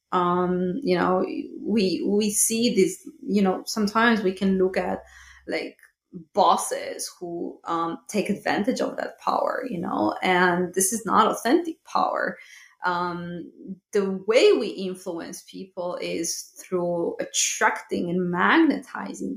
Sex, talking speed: female, 130 wpm